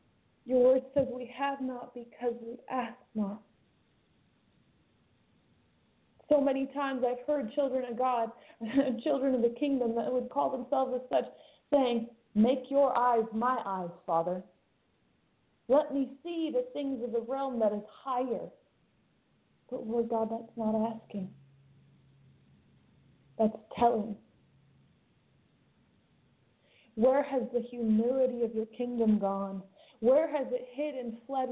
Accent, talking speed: American, 130 wpm